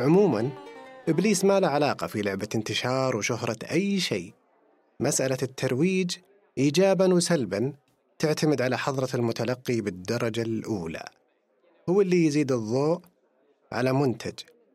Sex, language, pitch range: male, Arabic, 120-175 Hz